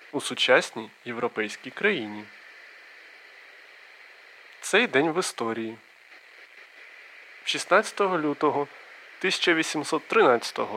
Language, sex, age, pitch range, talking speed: Ukrainian, male, 20-39, 125-185 Hz, 60 wpm